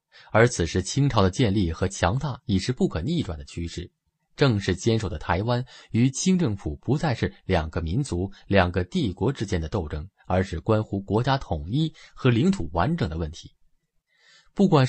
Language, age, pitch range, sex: Chinese, 20-39, 95-155 Hz, male